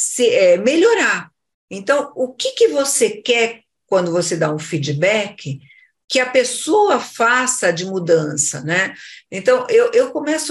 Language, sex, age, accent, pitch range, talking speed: Portuguese, female, 50-69, Brazilian, 175-275 Hz, 130 wpm